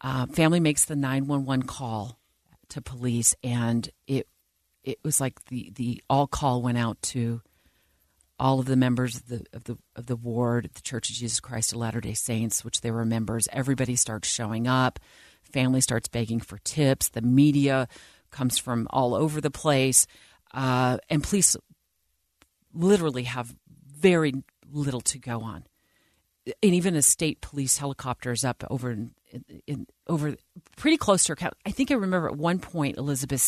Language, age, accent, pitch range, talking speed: English, 40-59, American, 115-145 Hz, 175 wpm